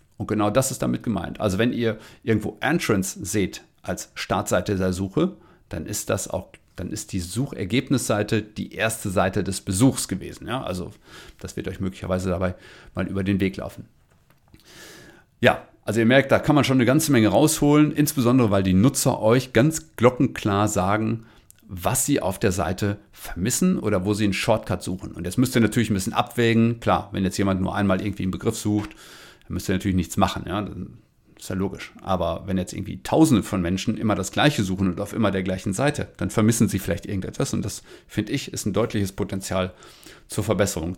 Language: German